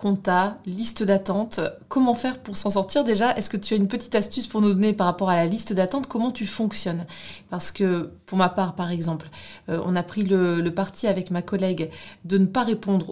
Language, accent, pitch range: French, French, 175-210 Hz